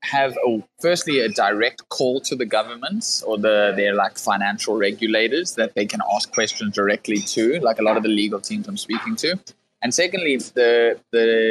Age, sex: 20-39, male